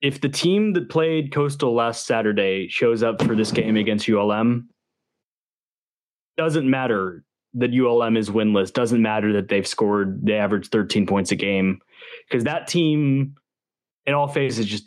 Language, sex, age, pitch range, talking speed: English, male, 20-39, 110-145 Hz, 155 wpm